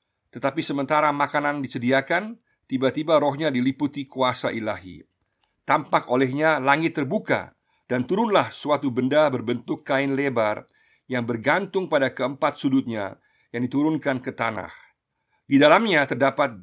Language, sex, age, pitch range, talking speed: Indonesian, male, 50-69, 125-155 Hz, 115 wpm